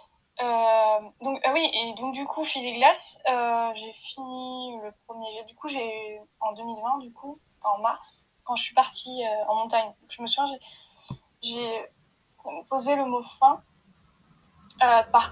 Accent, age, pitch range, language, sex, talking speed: French, 20-39, 220-265 Hz, French, female, 175 wpm